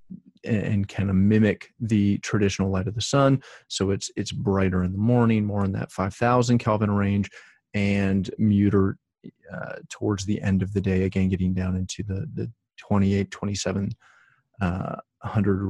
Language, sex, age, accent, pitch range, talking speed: English, male, 30-49, American, 100-120 Hz, 160 wpm